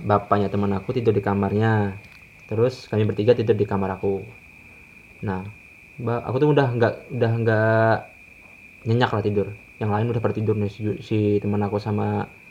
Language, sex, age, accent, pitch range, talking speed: Indonesian, male, 20-39, native, 95-115 Hz, 155 wpm